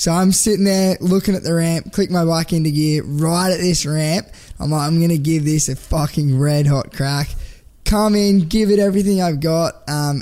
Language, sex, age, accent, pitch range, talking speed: English, male, 10-29, Australian, 150-180 Hz, 215 wpm